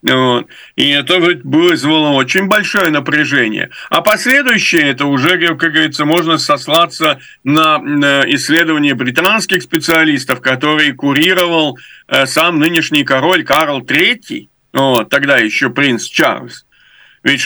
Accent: native